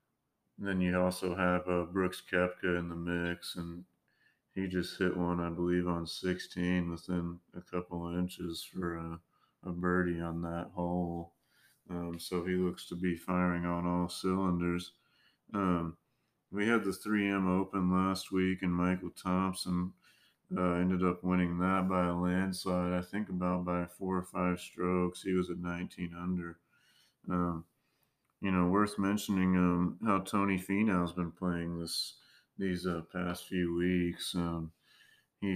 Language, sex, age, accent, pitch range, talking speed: English, male, 30-49, American, 85-95 Hz, 160 wpm